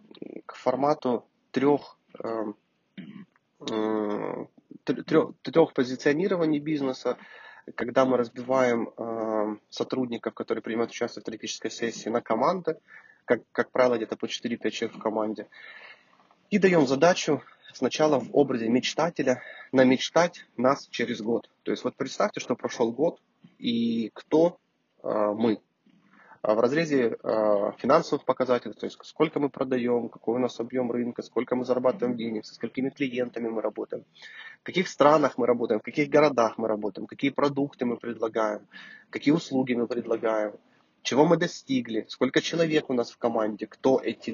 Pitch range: 115-145 Hz